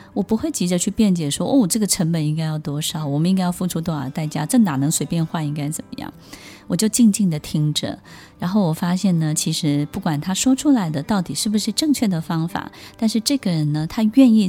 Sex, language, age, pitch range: female, Chinese, 20-39, 155-210 Hz